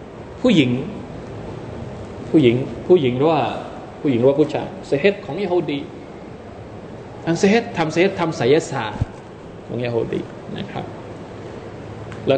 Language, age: Thai, 20-39